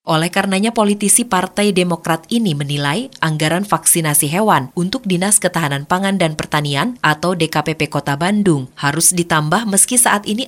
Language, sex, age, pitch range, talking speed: Indonesian, female, 20-39, 130-185 Hz, 145 wpm